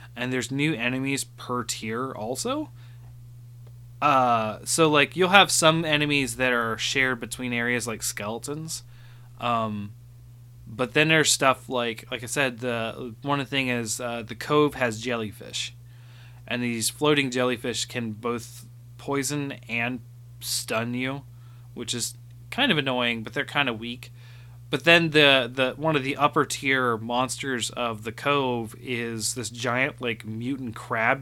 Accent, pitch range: American, 120-140 Hz